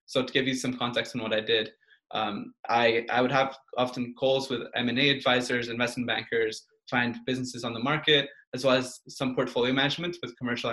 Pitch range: 120-140 Hz